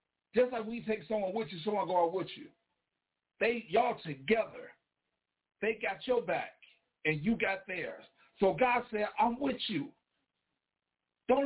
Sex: male